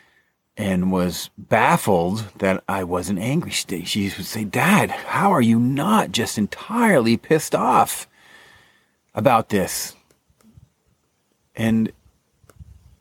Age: 30-49